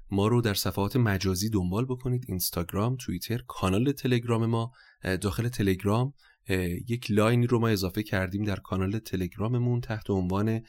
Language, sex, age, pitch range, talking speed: Persian, male, 30-49, 95-115 Hz, 140 wpm